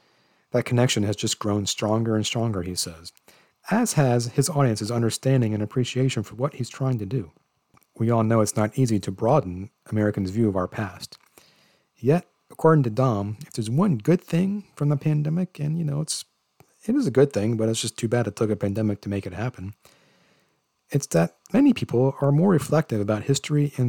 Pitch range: 105-140 Hz